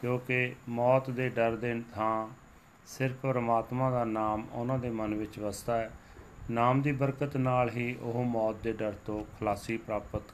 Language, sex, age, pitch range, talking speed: Punjabi, male, 40-59, 110-130 Hz, 165 wpm